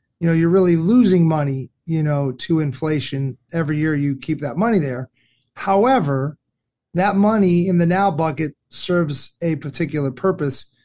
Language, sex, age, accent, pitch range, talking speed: English, male, 40-59, American, 150-185 Hz, 155 wpm